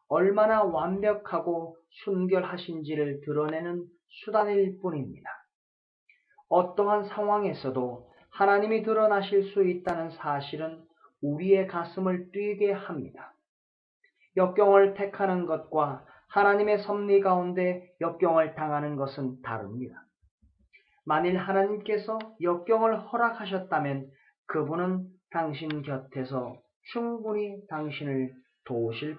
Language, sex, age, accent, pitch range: Korean, male, 30-49, native, 150-200 Hz